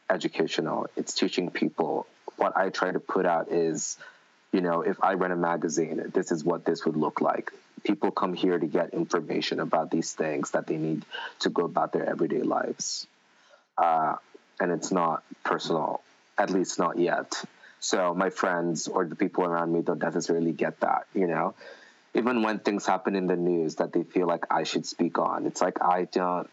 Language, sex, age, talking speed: English, male, 20-39, 190 wpm